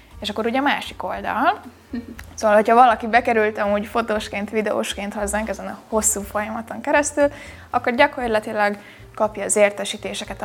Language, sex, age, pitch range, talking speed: Hungarian, female, 20-39, 205-245 Hz, 140 wpm